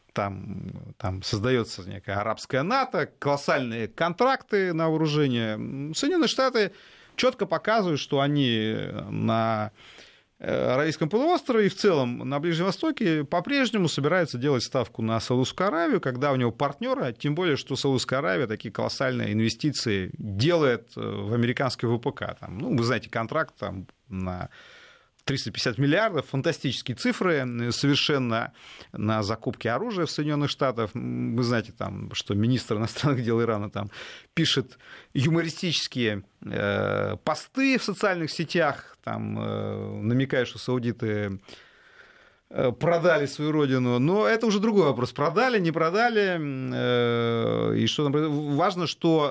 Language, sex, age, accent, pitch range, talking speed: Russian, male, 30-49, native, 115-170 Hz, 120 wpm